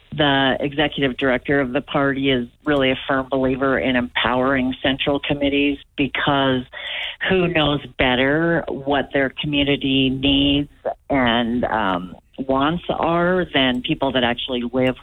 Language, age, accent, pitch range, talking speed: English, 40-59, American, 130-145 Hz, 130 wpm